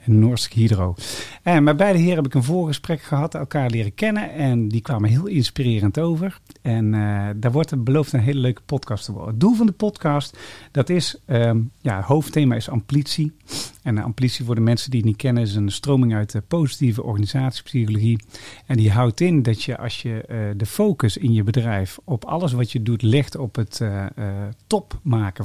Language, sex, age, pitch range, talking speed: Dutch, male, 40-59, 110-140 Hz, 205 wpm